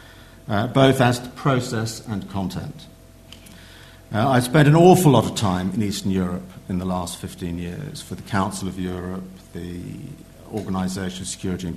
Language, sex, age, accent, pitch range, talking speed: English, male, 50-69, British, 90-110 Hz, 170 wpm